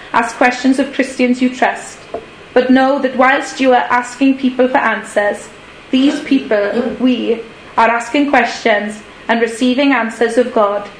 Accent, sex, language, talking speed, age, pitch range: British, female, English, 145 wpm, 20-39, 225-270 Hz